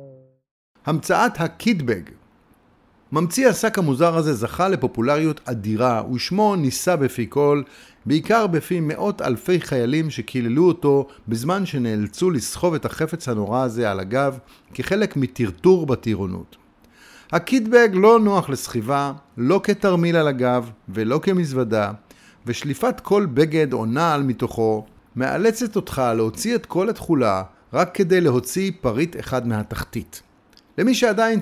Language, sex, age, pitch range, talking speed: Hebrew, male, 50-69, 120-185 Hz, 120 wpm